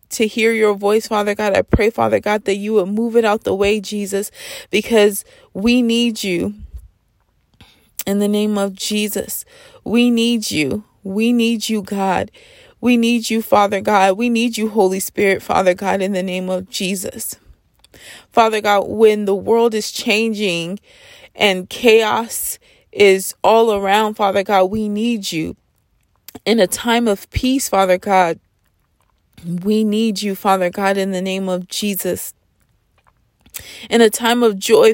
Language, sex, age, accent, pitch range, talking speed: English, female, 20-39, American, 185-225 Hz, 155 wpm